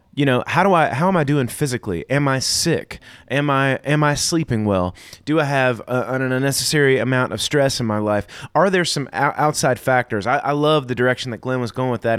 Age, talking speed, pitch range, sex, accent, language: 30-49, 225 wpm, 115-150 Hz, male, American, English